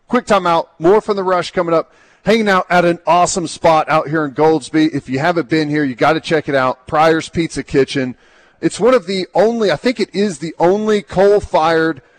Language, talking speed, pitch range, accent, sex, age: English, 215 wpm, 145-170 Hz, American, male, 40-59